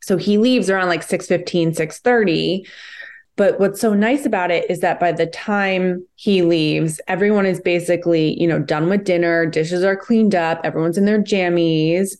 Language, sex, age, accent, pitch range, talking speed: English, female, 20-39, American, 165-200 Hz, 175 wpm